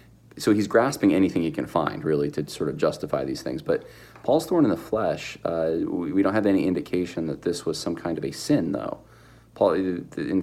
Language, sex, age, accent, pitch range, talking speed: English, male, 40-59, American, 80-95 Hz, 220 wpm